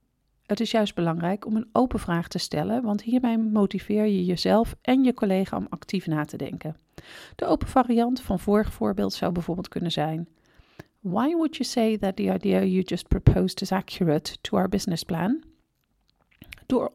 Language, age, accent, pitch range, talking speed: Dutch, 40-59, Dutch, 175-235 Hz, 175 wpm